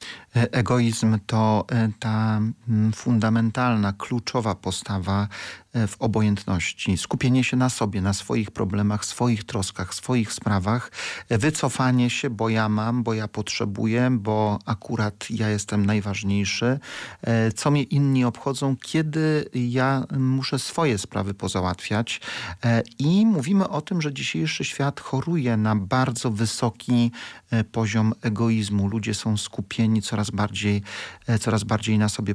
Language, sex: Polish, male